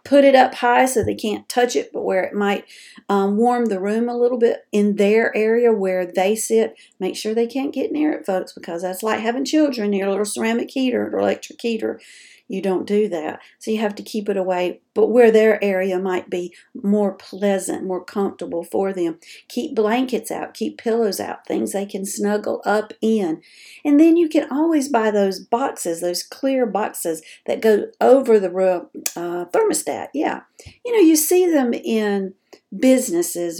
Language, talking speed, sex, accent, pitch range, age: English, 195 wpm, female, American, 190-245 Hz, 50-69